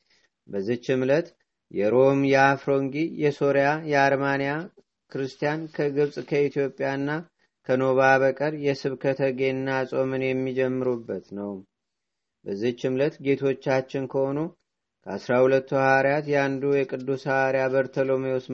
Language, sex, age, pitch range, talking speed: Amharic, male, 40-59, 130-140 Hz, 85 wpm